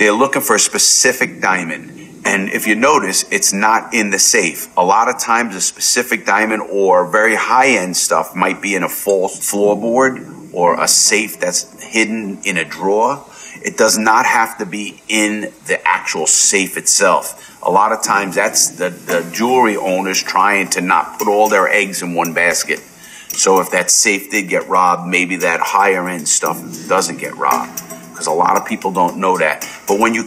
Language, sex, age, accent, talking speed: English, male, 40-59, American, 185 wpm